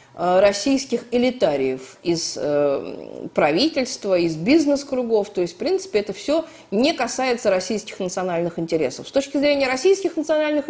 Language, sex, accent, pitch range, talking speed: Russian, female, native, 200-280 Hz, 130 wpm